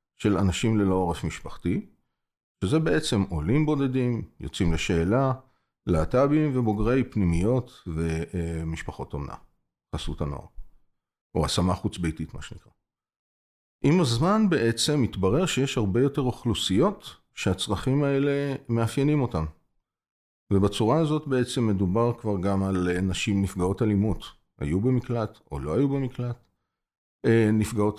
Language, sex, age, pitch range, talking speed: Hebrew, male, 40-59, 85-120 Hz, 115 wpm